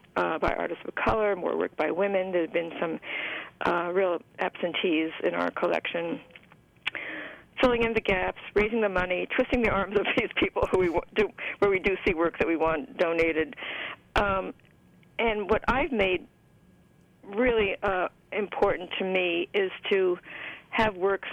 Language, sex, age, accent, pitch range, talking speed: English, female, 50-69, American, 185-245 Hz, 165 wpm